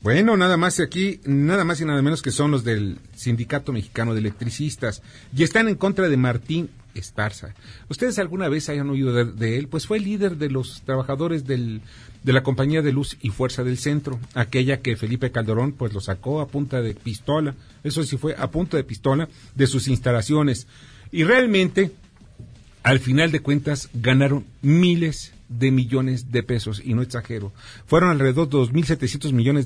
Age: 40-59